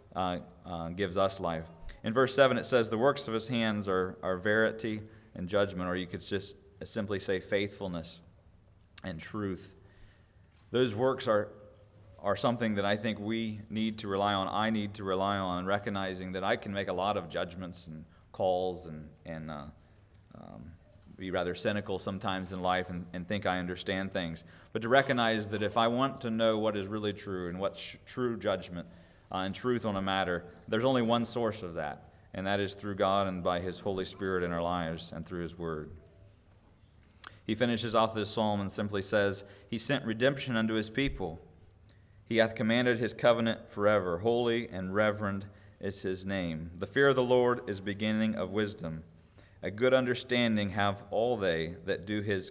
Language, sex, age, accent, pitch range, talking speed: English, male, 30-49, American, 90-110 Hz, 185 wpm